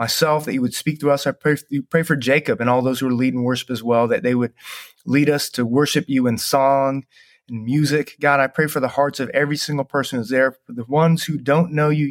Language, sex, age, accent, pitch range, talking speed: English, male, 30-49, American, 125-150 Hz, 270 wpm